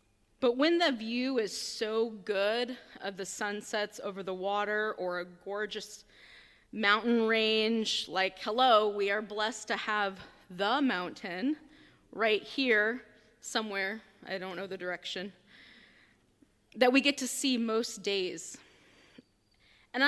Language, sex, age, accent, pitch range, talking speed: English, female, 20-39, American, 205-260 Hz, 130 wpm